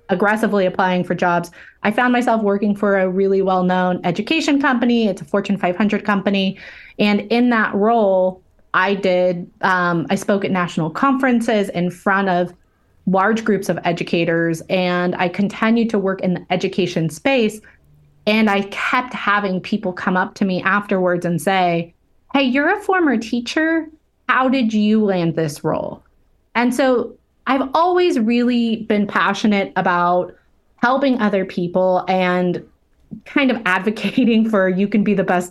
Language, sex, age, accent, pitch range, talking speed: English, female, 30-49, American, 185-225 Hz, 155 wpm